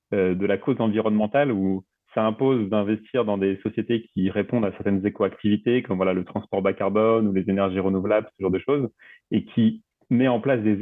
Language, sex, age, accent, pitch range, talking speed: French, male, 30-49, French, 100-120 Hz, 200 wpm